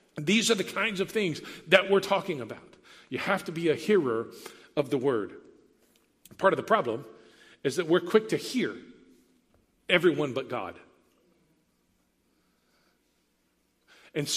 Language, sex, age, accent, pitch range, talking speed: English, male, 50-69, American, 150-195 Hz, 140 wpm